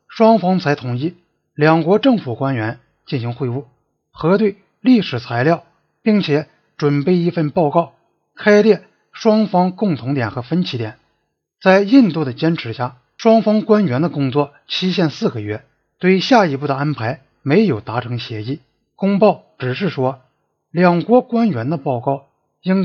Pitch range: 130-190 Hz